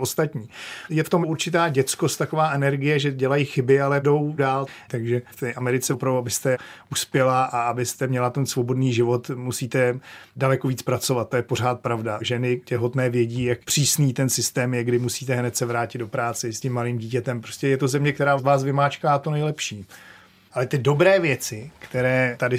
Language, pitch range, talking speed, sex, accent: Czech, 120-135 Hz, 185 wpm, male, native